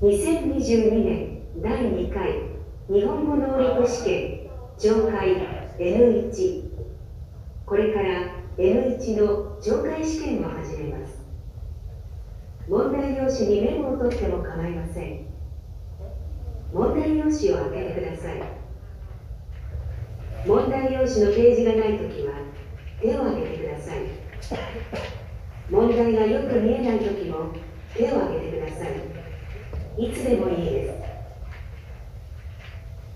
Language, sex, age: Vietnamese, female, 40-59